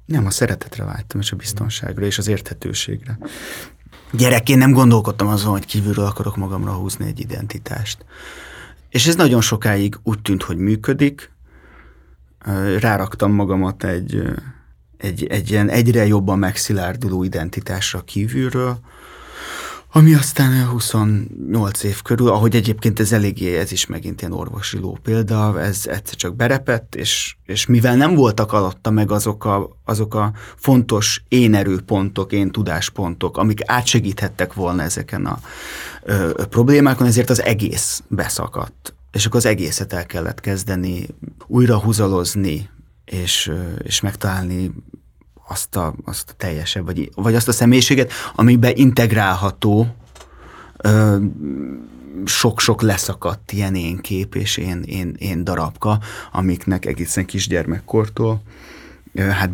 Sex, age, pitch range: male, 30-49, 95-115 Hz